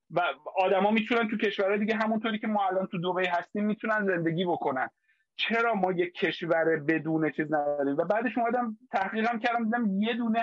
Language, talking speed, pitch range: Persian, 185 wpm, 170-215 Hz